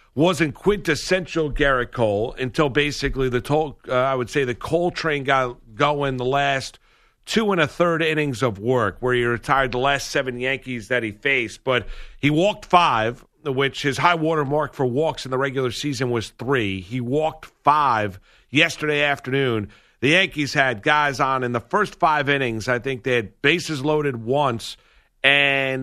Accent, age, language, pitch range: American, 50-69, English, 125-155 Hz